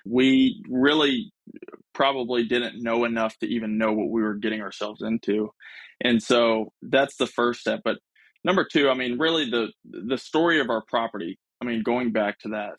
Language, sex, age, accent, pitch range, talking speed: English, male, 20-39, American, 110-125 Hz, 185 wpm